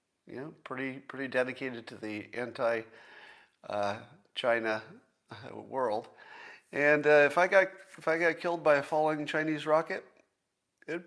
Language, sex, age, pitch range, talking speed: English, male, 50-69, 120-170 Hz, 135 wpm